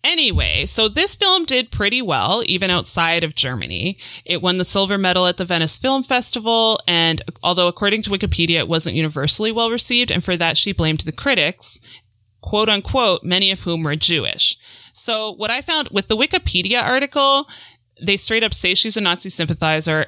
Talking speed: 180 wpm